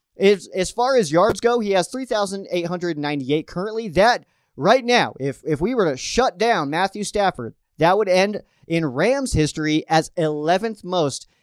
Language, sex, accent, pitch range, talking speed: English, male, American, 150-190 Hz, 160 wpm